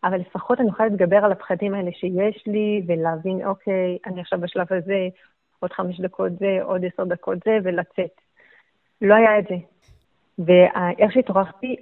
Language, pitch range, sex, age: Hebrew, 180-215 Hz, female, 30-49